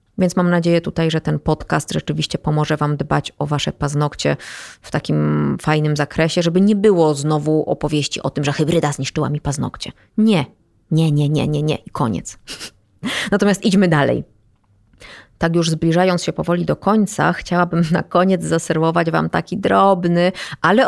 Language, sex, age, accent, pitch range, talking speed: Polish, female, 20-39, native, 150-195 Hz, 160 wpm